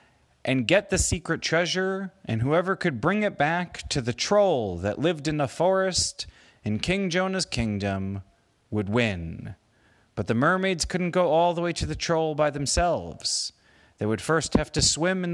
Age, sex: 30-49, male